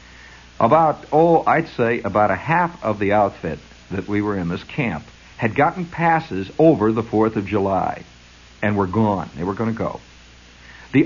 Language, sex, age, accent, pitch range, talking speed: English, male, 60-79, American, 95-150 Hz, 180 wpm